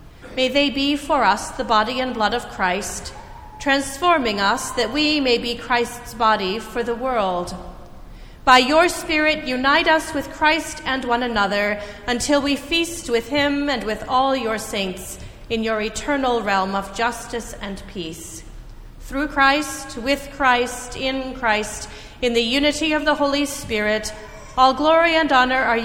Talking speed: 160 wpm